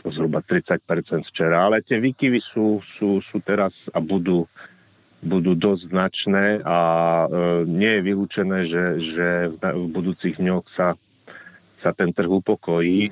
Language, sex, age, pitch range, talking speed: Slovak, male, 40-59, 80-90 Hz, 135 wpm